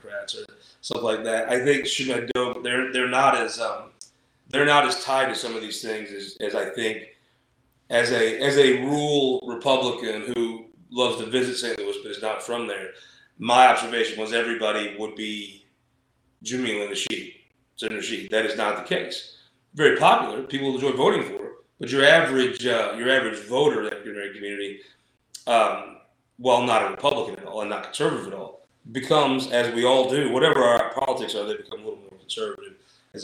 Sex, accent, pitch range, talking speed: male, American, 110-145 Hz, 185 wpm